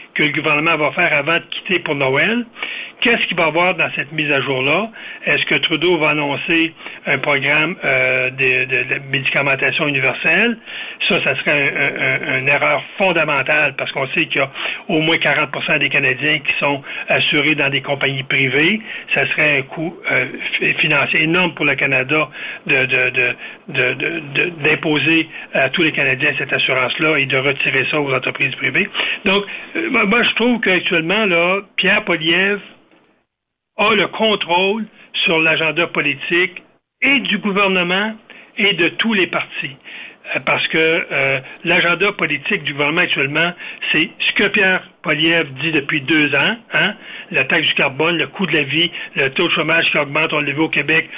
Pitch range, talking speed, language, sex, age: 145-190 Hz, 165 wpm, French, male, 60-79